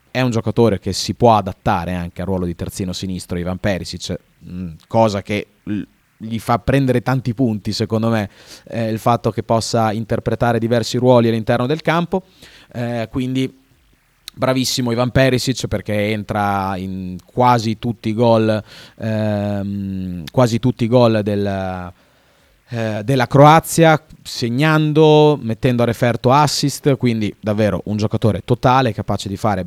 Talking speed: 125 wpm